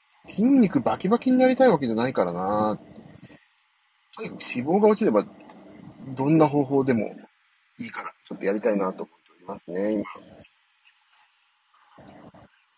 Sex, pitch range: male, 120-195 Hz